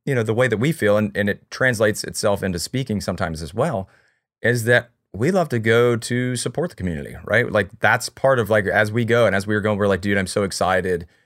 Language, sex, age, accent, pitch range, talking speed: English, male, 40-59, American, 95-110 Hz, 250 wpm